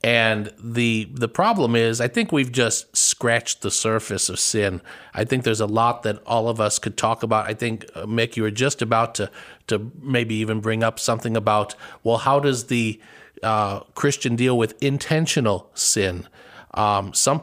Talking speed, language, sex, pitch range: 180 wpm, English, male, 115-135 Hz